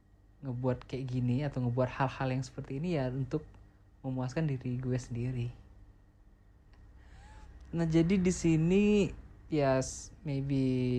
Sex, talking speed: male, 120 wpm